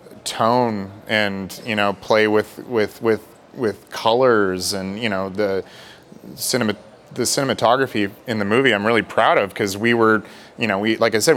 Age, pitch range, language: 30-49, 100-120 Hz, English